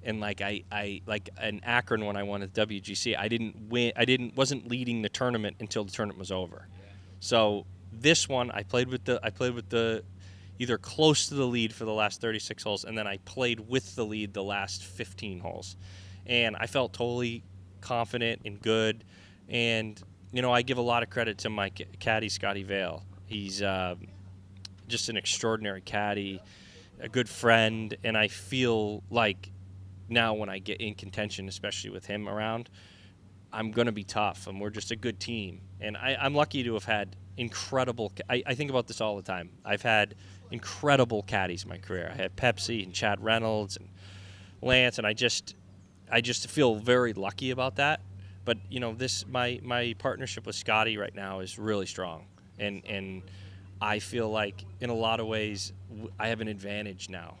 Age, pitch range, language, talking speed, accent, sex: 20-39, 95-115 Hz, English, 190 wpm, American, male